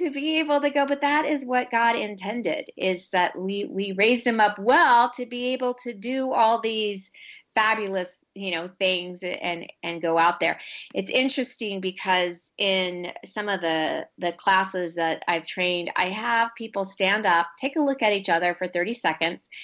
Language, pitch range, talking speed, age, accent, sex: English, 185-250 Hz, 185 wpm, 30-49, American, female